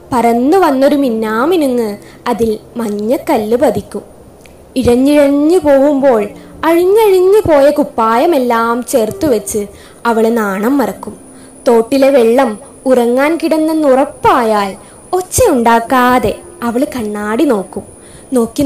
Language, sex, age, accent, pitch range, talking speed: Malayalam, female, 20-39, native, 225-305 Hz, 85 wpm